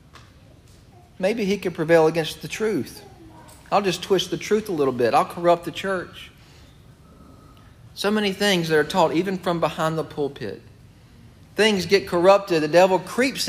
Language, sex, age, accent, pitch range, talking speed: English, male, 40-59, American, 155-215 Hz, 160 wpm